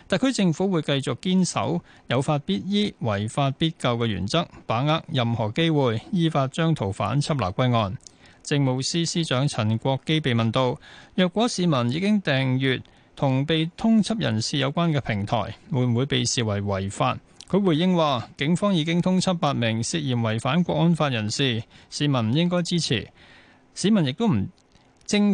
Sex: male